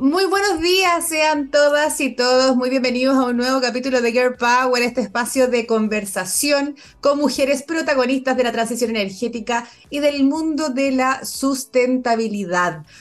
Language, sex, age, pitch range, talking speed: Spanish, female, 30-49, 225-280 Hz, 150 wpm